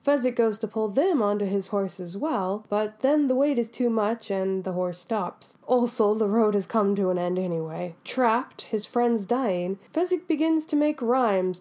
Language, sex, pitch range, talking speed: English, female, 190-245 Hz, 200 wpm